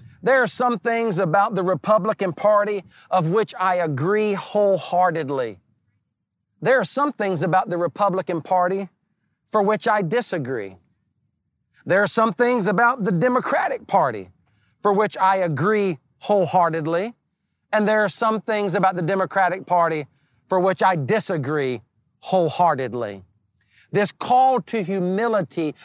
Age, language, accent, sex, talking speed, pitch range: 40-59, English, American, male, 130 wpm, 160-215 Hz